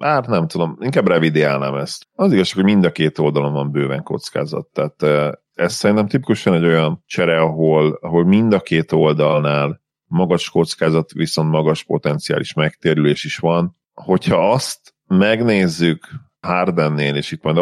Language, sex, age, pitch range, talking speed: Hungarian, male, 40-59, 80-95 Hz, 150 wpm